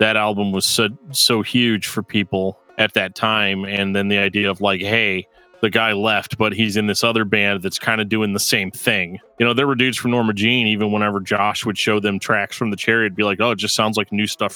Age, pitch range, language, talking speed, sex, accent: 30-49, 100-120 Hz, English, 250 wpm, male, American